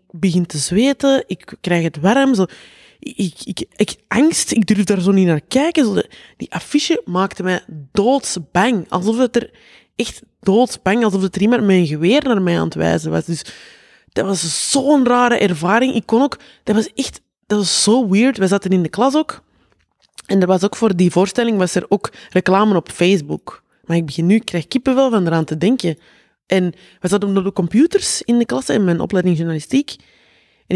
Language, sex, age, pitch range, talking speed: Dutch, female, 20-39, 185-250 Hz, 205 wpm